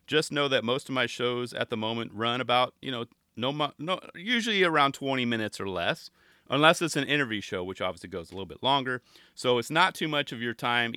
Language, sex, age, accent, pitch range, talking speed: English, male, 30-49, American, 95-145 Hz, 235 wpm